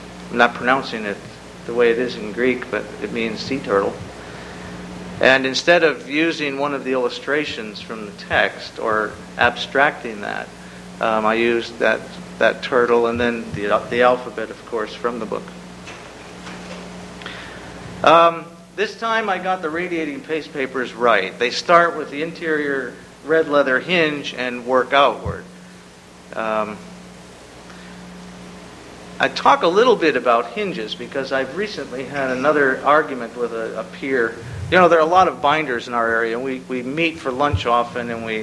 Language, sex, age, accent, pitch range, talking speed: English, male, 50-69, American, 110-145 Hz, 160 wpm